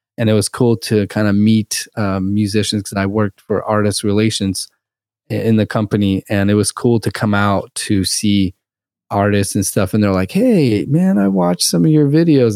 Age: 20-39